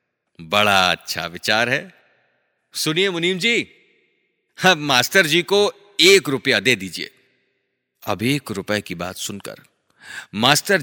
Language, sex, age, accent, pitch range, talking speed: Hindi, male, 30-49, native, 100-140 Hz, 125 wpm